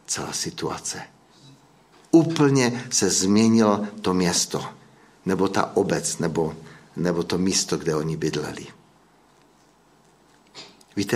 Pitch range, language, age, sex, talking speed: 90-115 Hz, Czech, 60-79, male, 95 wpm